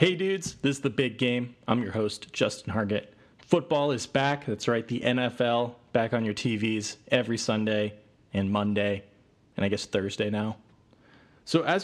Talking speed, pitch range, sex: 170 wpm, 105-135 Hz, male